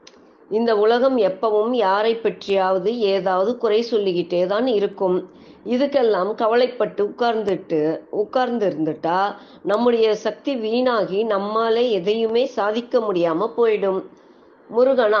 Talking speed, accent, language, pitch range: 95 wpm, native, Tamil, 200-245 Hz